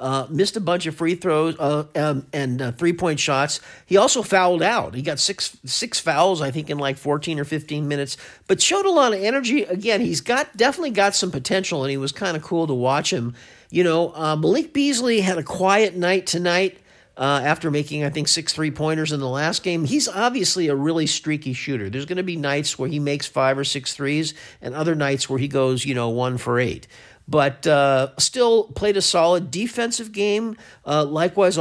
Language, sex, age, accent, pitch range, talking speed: English, male, 50-69, American, 145-190 Hz, 215 wpm